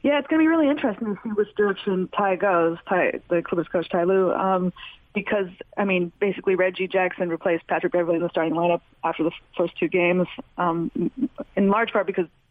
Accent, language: American, English